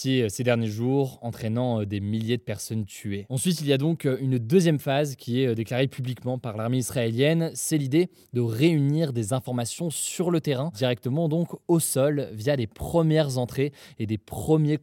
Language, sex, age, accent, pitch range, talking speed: French, male, 20-39, French, 115-140 Hz, 180 wpm